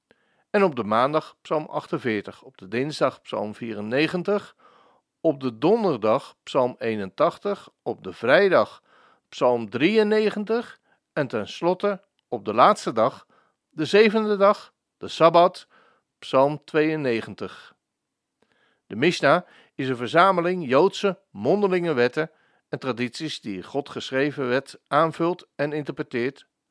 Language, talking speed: Dutch, 115 wpm